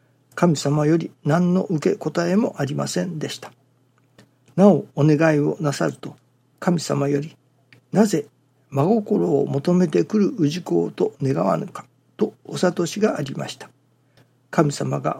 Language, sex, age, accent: Japanese, male, 60-79, native